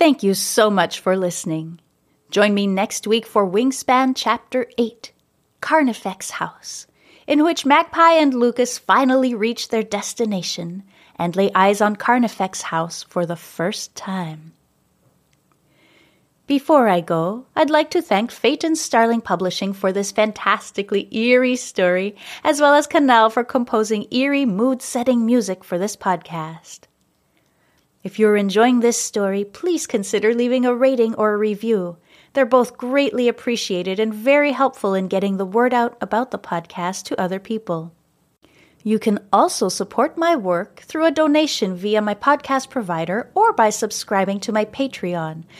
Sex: female